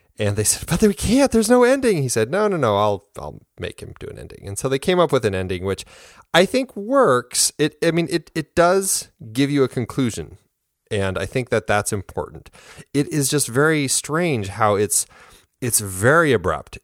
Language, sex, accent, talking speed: English, male, American, 210 wpm